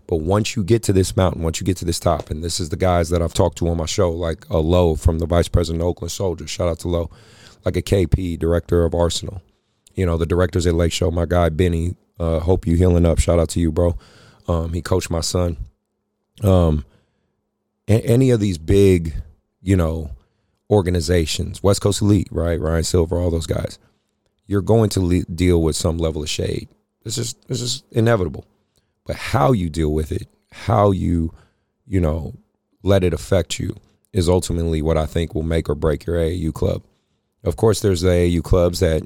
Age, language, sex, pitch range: 30-49, English, male, 85-100 Hz